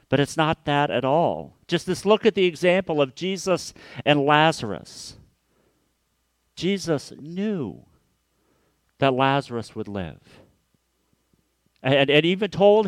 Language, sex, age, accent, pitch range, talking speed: English, male, 50-69, American, 110-180 Hz, 120 wpm